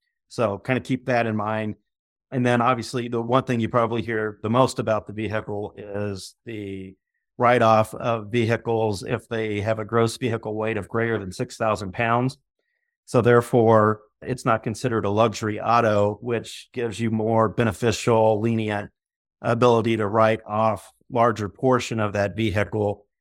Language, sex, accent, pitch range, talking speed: English, male, American, 105-120 Hz, 160 wpm